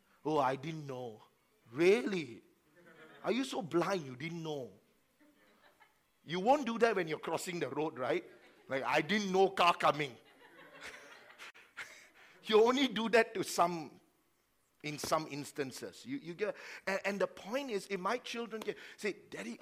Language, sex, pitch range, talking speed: English, male, 130-210 Hz, 155 wpm